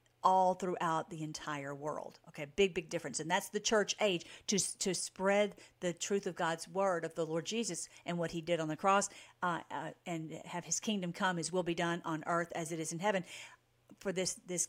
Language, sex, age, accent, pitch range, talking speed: English, female, 50-69, American, 175-235 Hz, 220 wpm